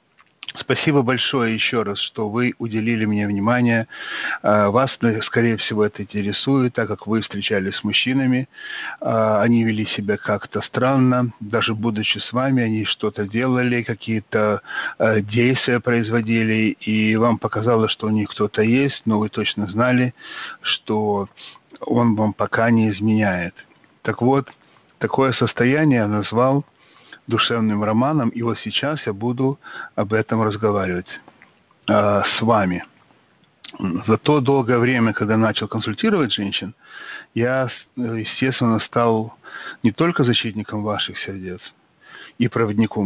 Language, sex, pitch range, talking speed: Russian, male, 105-125 Hz, 125 wpm